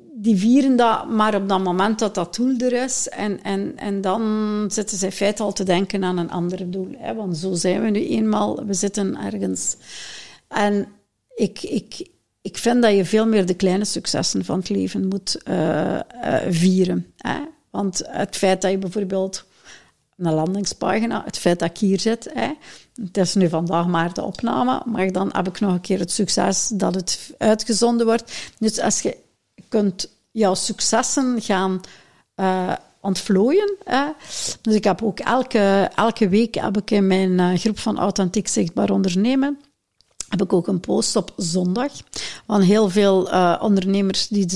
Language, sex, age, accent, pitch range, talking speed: Dutch, female, 60-79, Dutch, 185-220 Hz, 170 wpm